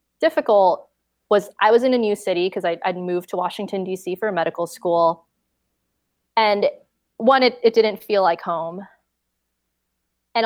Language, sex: English, female